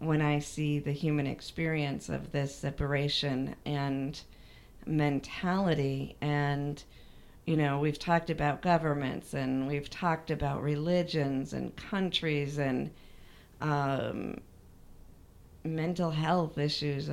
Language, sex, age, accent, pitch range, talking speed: English, female, 40-59, American, 145-165 Hz, 105 wpm